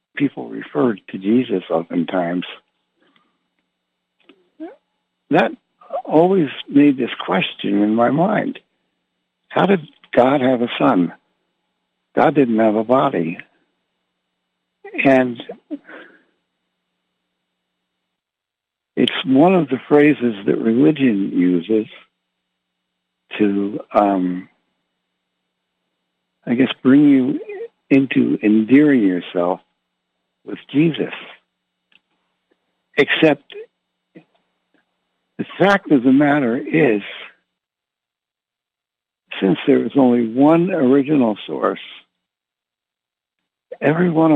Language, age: English, 60-79